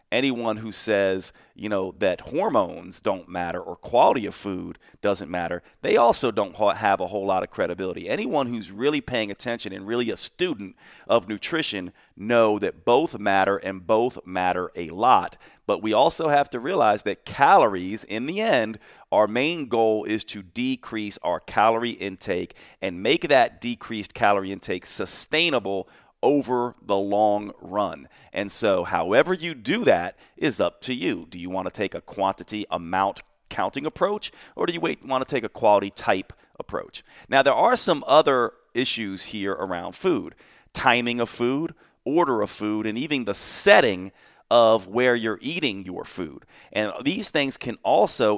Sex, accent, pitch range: male, American, 100-130 Hz